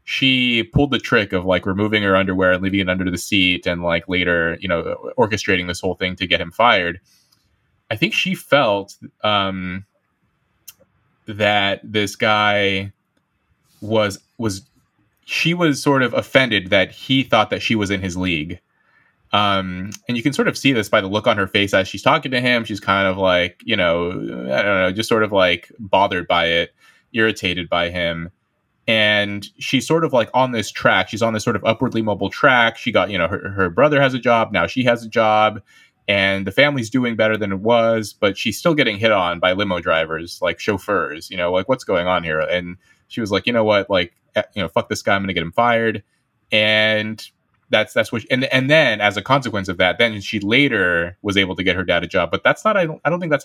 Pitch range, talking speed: 95-115 Hz, 220 wpm